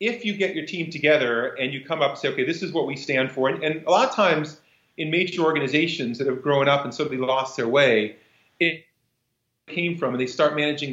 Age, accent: 40-59, American